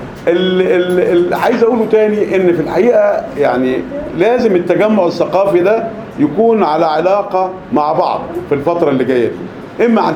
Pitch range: 155-215 Hz